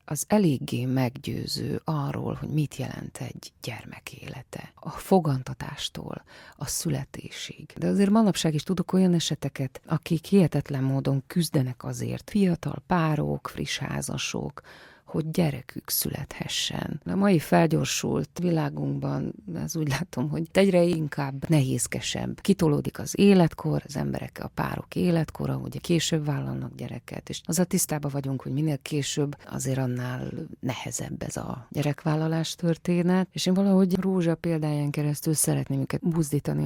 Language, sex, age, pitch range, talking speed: Hungarian, female, 30-49, 135-170 Hz, 130 wpm